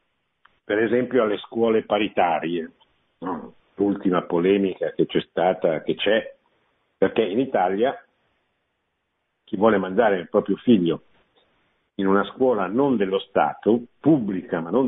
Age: 50-69